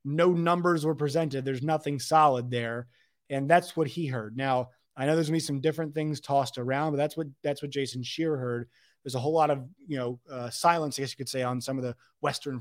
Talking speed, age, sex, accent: 245 wpm, 30-49, male, American